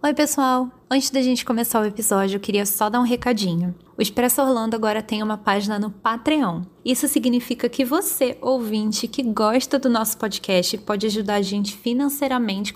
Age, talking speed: 10-29, 180 wpm